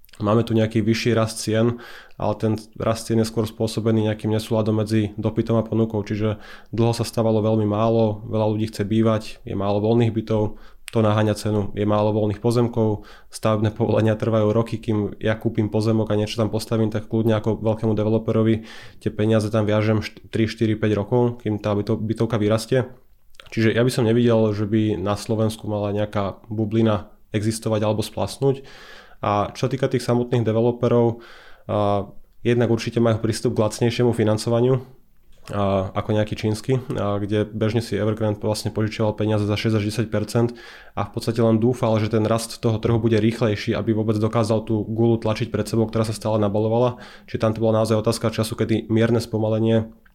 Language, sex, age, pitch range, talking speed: Slovak, male, 20-39, 105-115 Hz, 170 wpm